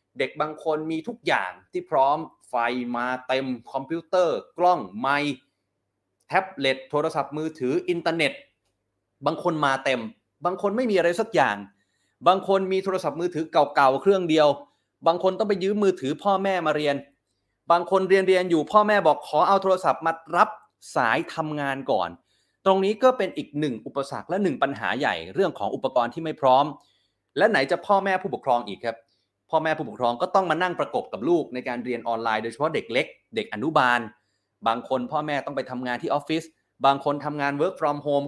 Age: 30-49